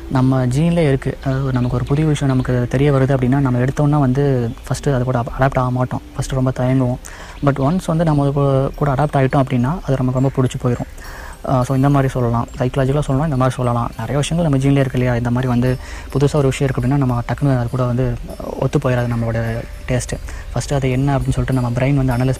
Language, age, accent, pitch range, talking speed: Tamil, 20-39, native, 120-135 Hz, 215 wpm